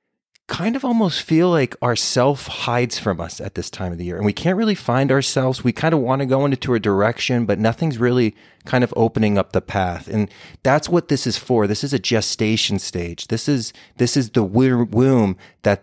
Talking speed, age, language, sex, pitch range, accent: 220 wpm, 30-49, English, male, 100-125 Hz, American